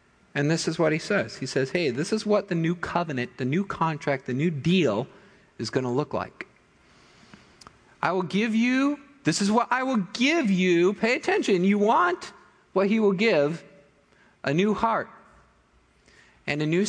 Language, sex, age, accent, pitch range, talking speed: English, male, 50-69, American, 145-200 Hz, 180 wpm